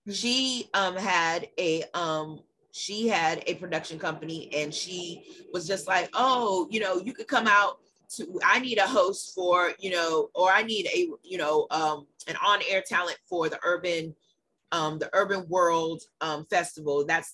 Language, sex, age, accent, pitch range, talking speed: English, female, 30-49, American, 155-190 Hz, 175 wpm